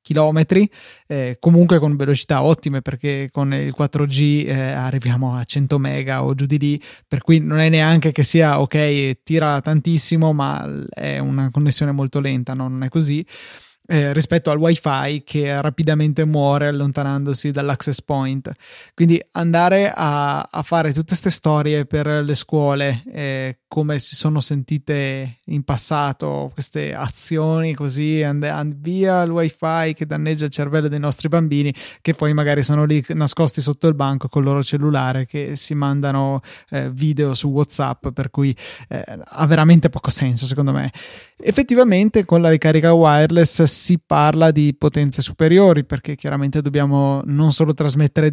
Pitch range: 140-155 Hz